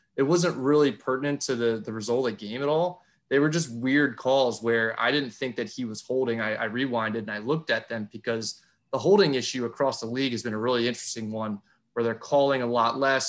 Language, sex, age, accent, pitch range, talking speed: English, male, 20-39, American, 115-135 Hz, 240 wpm